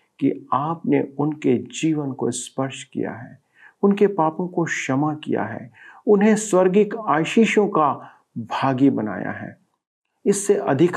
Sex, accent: male, native